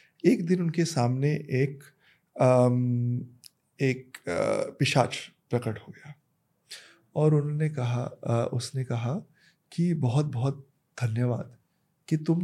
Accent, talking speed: native, 115 wpm